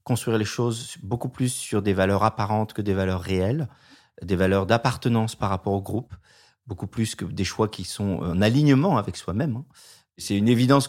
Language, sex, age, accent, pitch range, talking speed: French, male, 40-59, French, 100-130 Hz, 185 wpm